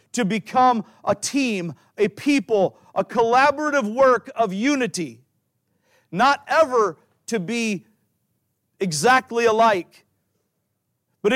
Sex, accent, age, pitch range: male, American, 50-69, 185-235 Hz